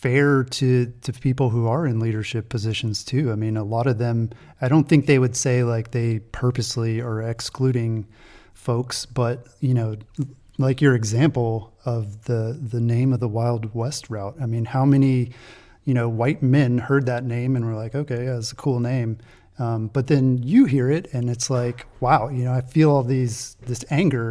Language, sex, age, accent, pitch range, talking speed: English, male, 30-49, American, 115-135 Hz, 195 wpm